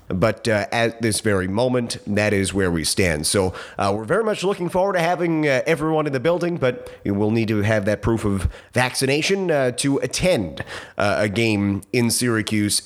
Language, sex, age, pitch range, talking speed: English, male, 30-49, 110-145 Hz, 195 wpm